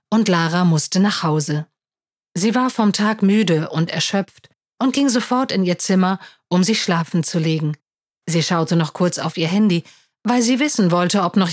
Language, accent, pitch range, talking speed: German, German, 165-230 Hz, 185 wpm